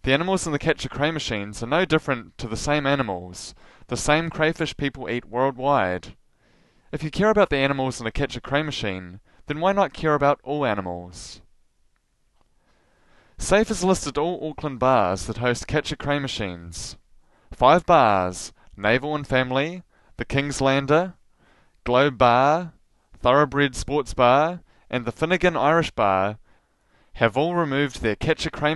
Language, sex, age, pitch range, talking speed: English, male, 20-39, 115-155 Hz, 150 wpm